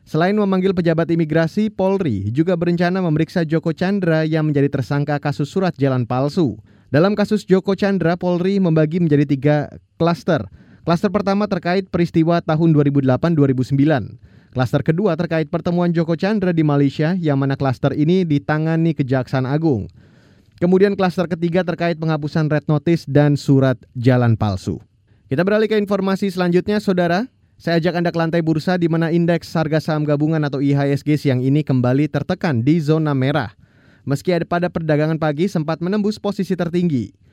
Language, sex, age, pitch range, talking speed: Indonesian, male, 20-39, 145-180 Hz, 150 wpm